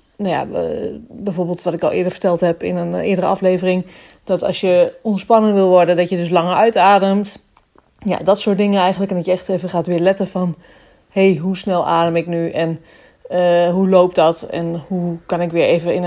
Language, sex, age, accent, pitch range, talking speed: Dutch, female, 30-49, Dutch, 180-215 Hz, 215 wpm